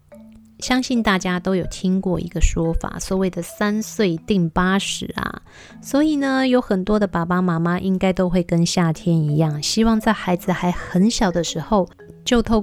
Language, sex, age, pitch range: Chinese, female, 20-39, 175-210 Hz